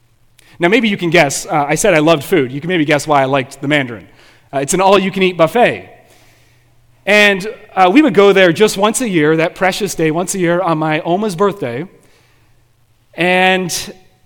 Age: 30-49